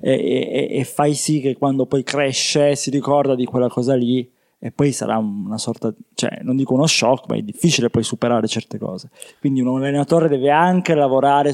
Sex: male